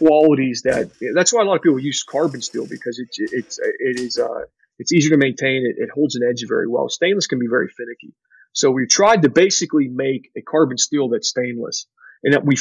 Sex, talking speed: male, 205 wpm